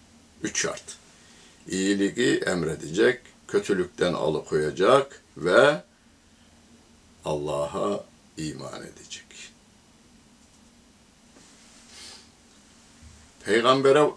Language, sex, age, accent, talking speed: Turkish, male, 60-79, native, 45 wpm